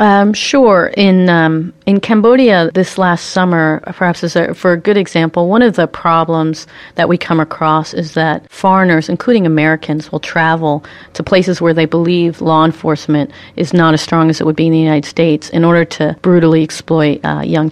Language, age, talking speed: English, 40-59, 195 wpm